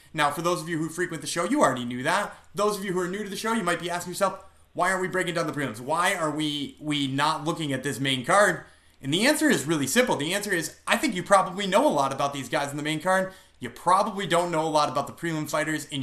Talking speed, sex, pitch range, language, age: 290 wpm, male, 140-190 Hz, English, 30-49